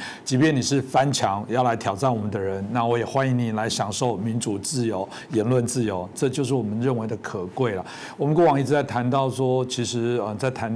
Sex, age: male, 60-79